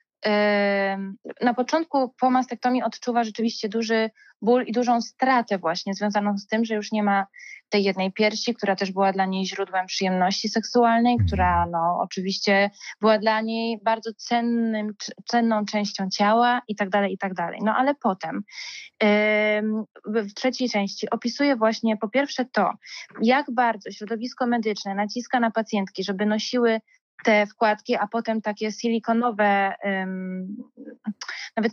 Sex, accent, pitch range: female, native, 205-240 Hz